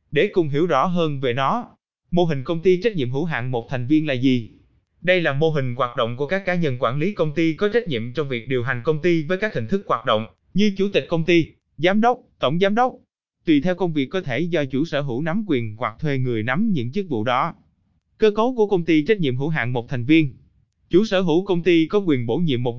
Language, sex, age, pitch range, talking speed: Vietnamese, male, 20-39, 120-175 Hz, 265 wpm